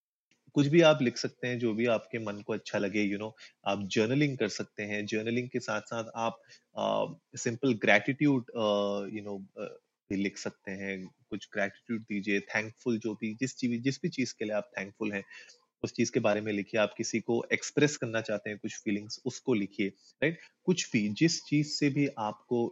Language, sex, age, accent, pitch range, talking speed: Hindi, male, 30-49, native, 105-125 Hz, 200 wpm